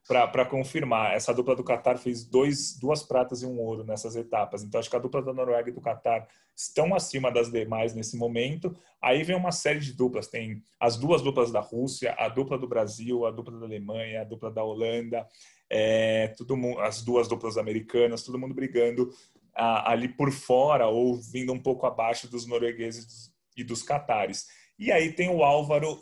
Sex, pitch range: male, 115-140 Hz